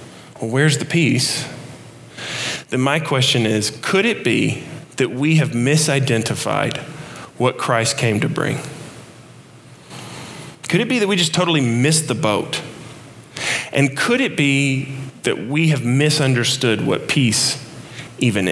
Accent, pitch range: American, 130-165 Hz